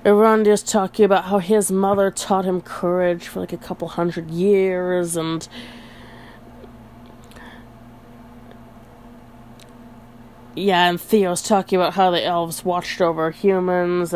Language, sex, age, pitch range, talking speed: English, female, 30-49, 120-185 Hz, 115 wpm